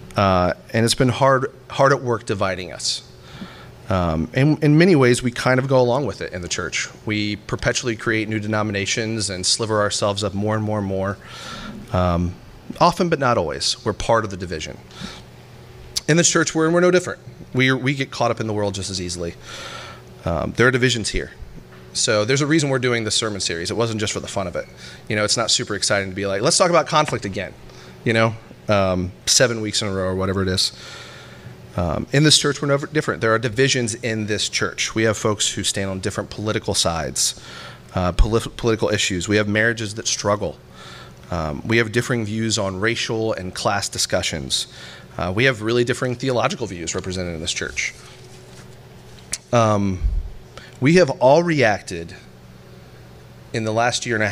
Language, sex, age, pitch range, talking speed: English, male, 30-49, 90-120 Hz, 195 wpm